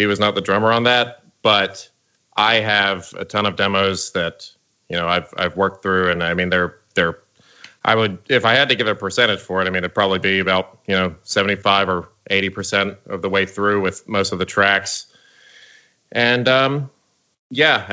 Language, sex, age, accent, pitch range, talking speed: English, male, 30-49, American, 85-105 Hz, 205 wpm